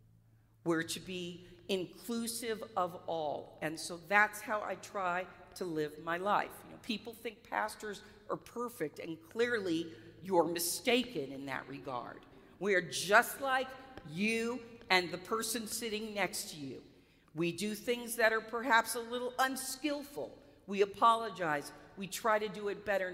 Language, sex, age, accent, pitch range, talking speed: English, female, 50-69, American, 180-245 Hz, 150 wpm